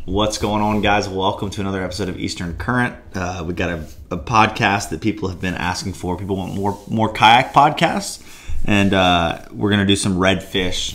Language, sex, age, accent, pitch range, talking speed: English, male, 30-49, American, 90-100 Hz, 195 wpm